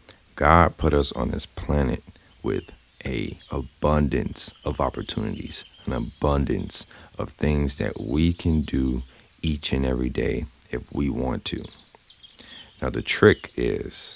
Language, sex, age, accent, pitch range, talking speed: English, male, 40-59, American, 70-85 Hz, 130 wpm